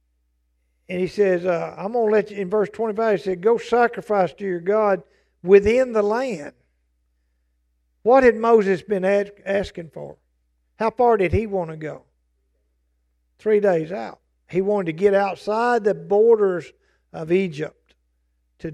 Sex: male